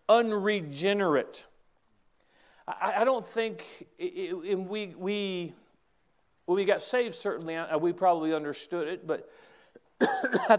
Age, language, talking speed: 40-59, English, 115 wpm